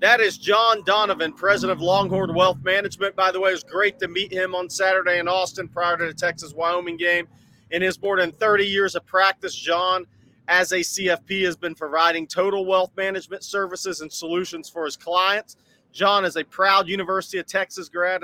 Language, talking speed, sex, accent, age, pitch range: English, 195 wpm, male, American, 40-59, 160-195 Hz